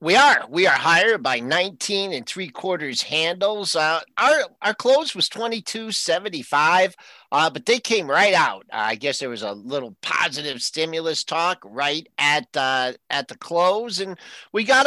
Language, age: English, 50-69